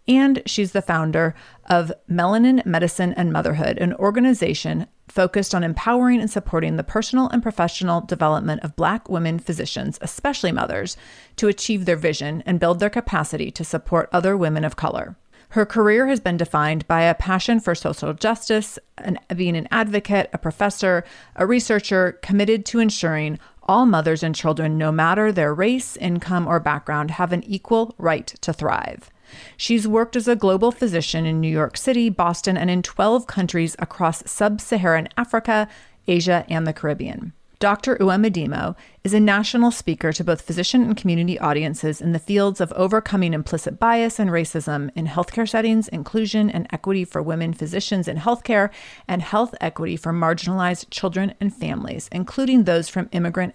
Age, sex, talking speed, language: 30-49, female, 165 wpm, English